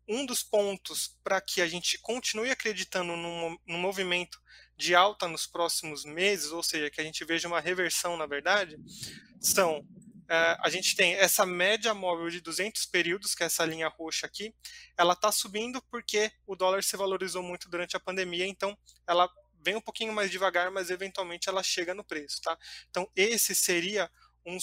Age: 20-39